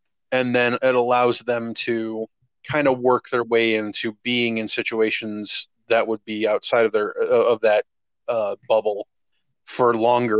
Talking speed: 155 wpm